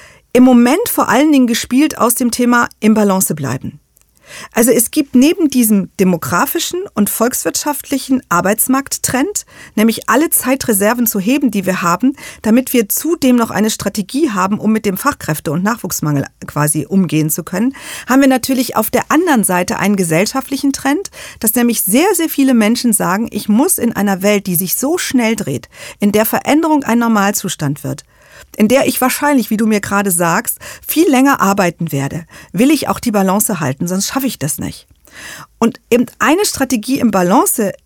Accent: German